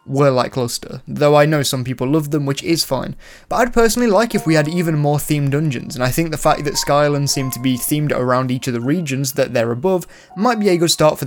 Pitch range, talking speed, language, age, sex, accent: 135-180 Hz, 260 wpm, English, 10-29, male, British